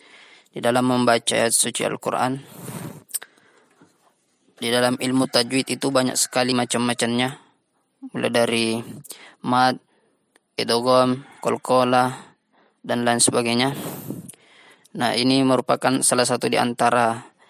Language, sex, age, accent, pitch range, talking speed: Indonesian, female, 20-39, native, 120-130 Hz, 95 wpm